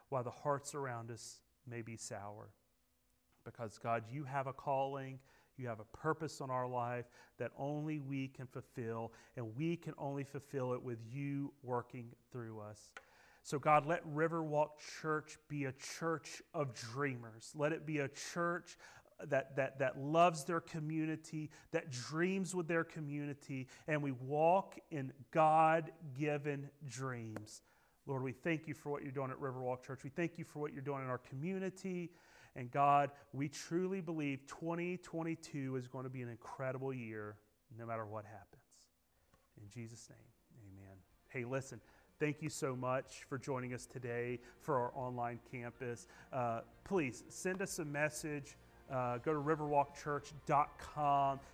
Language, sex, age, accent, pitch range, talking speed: English, male, 40-59, American, 120-155 Hz, 155 wpm